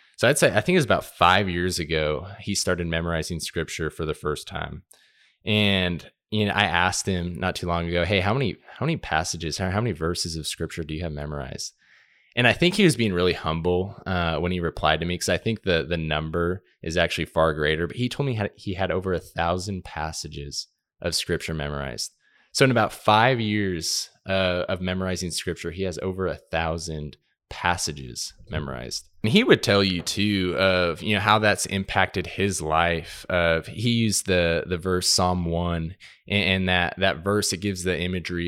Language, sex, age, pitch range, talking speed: English, male, 20-39, 80-100 Hz, 200 wpm